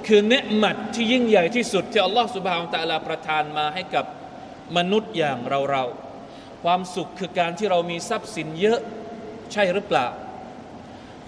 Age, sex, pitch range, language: 20-39, male, 175-235 Hz, Thai